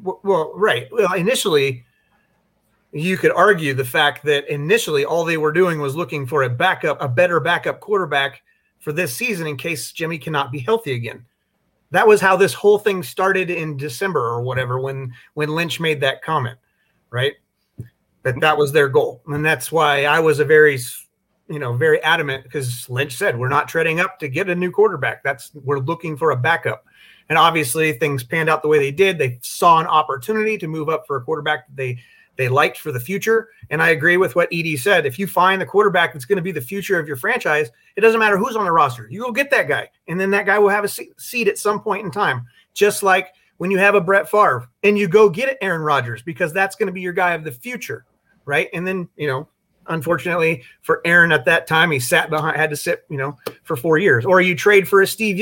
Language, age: English, 30-49